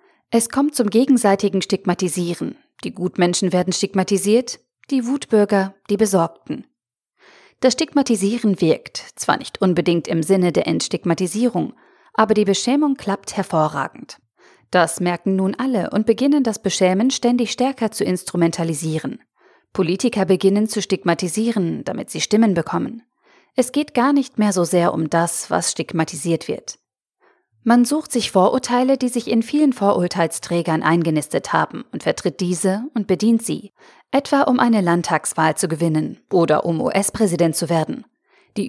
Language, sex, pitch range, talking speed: German, female, 175-240 Hz, 140 wpm